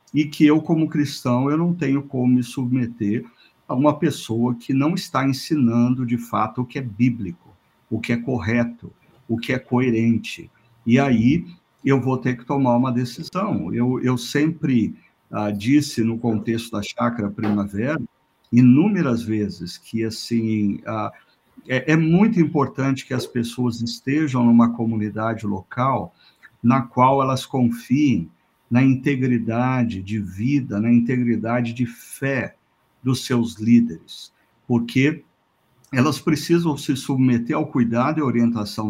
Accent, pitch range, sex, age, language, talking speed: Brazilian, 115-140 Hz, male, 50-69, Portuguese, 140 wpm